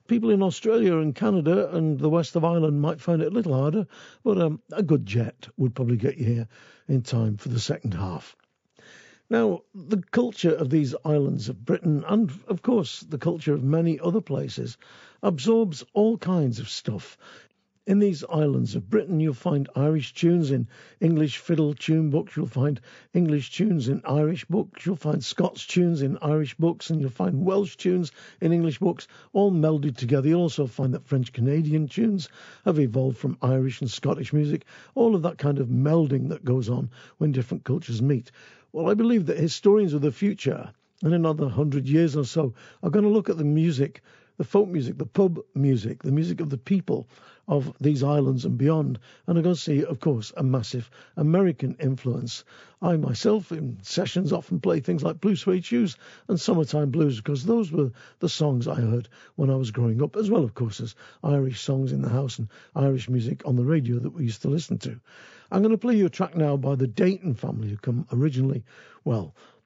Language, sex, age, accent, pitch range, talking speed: English, male, 50-69, British, 135-175 Hz, 200 wpm